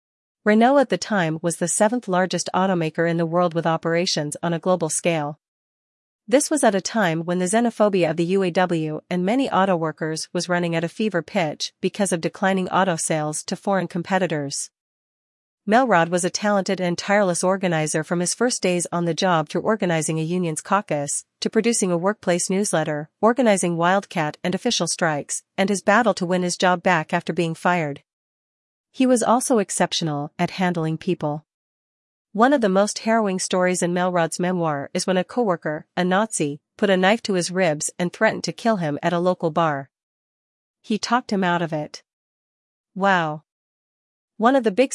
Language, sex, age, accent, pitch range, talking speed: English, female, 40-59, American, 165-200 Hz, 180 wpm